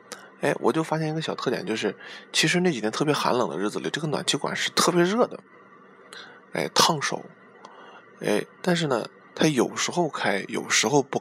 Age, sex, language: 20-39, male, Chinese